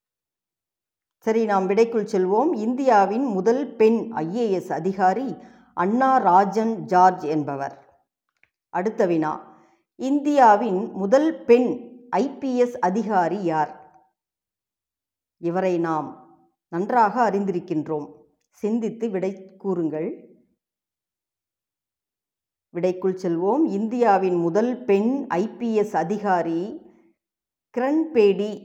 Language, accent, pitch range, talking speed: Tamil, native, 165-235 Hz, 75 wpm